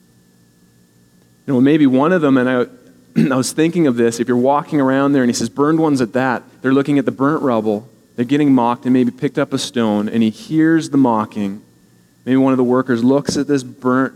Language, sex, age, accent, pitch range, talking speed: English, male, 40-59, American, 95-130 Hz, 230 wpm